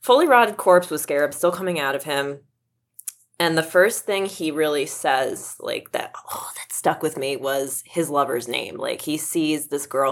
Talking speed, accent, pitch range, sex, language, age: 195 wpm, American, 135-170 Hz, female, English, 20-39